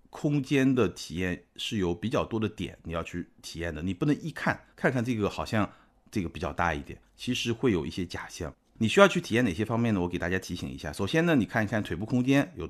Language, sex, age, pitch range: Chinese, male, 50-69, 90-120 Hz